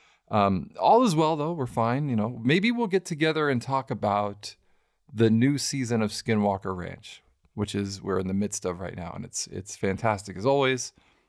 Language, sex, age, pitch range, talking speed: English, male, 40-59, 100-125 Hz, 195 wpm